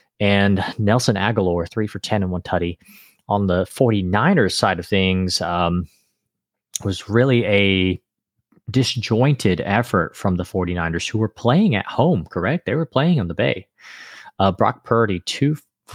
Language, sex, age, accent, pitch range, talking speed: English, male, 30-49, American, 95-115 Hz, 150 wpm